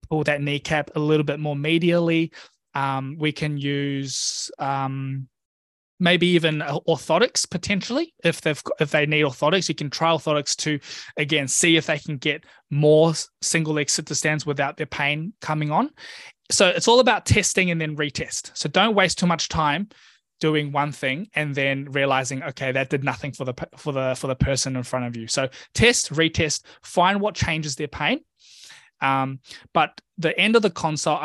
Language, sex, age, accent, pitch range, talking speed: English, male, 20-39, Australian, 135-165 Hz, 180 wpm